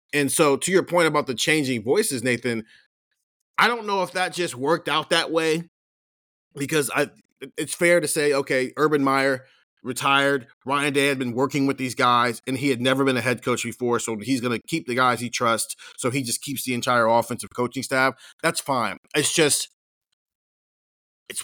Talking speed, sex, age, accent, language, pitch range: 195 wpm, male, 30-49, American, English, 120-155 Hz